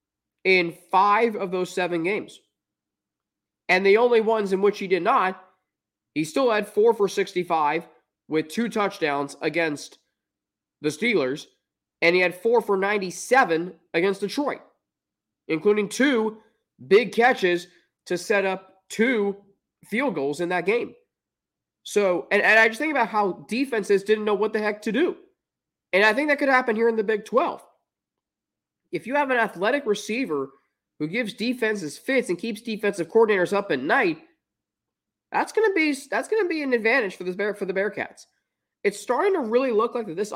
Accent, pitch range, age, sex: American, 185-255 Hz, 20-39, male